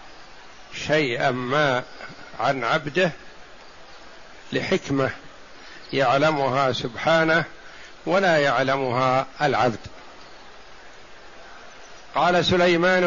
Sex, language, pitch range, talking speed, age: male, Arabic, 140-175 Hz, 55 wpm, 60-79